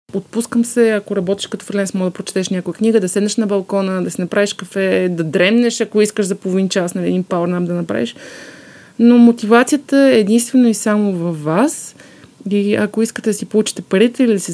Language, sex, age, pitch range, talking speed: Bulgarian, female, 20-39, 185-225 Hz, 200 wpm